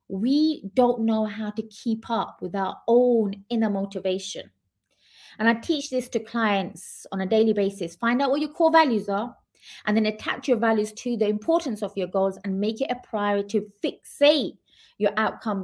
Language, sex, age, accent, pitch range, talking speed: English, female, 20-39, British, 195-240 Hz, 190 wpm